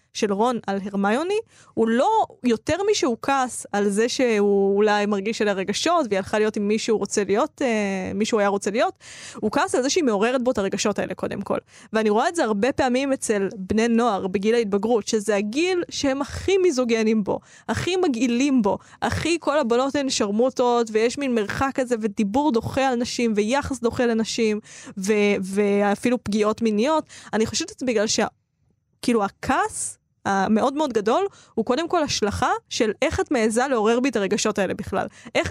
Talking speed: 170 wpm